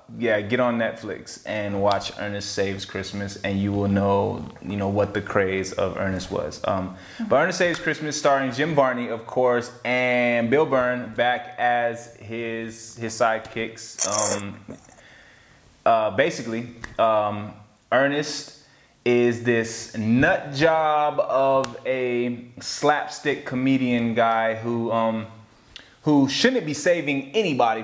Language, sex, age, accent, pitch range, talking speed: English, male, 20-39, American, 110-130 Hz, 130 wpm